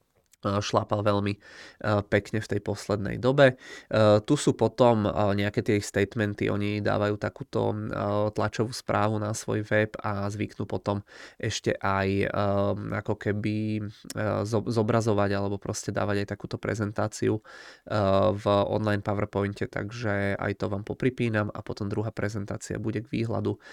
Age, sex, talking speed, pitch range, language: 20-39, male, 125 wpm, 100-110 Hz, Czech